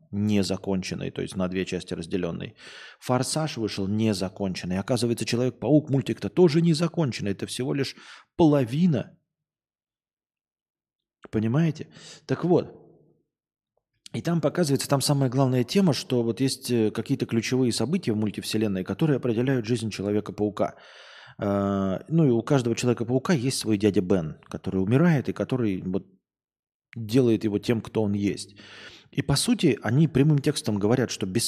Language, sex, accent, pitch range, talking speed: Russian, male, native, 105-140 Hz, 135 wpm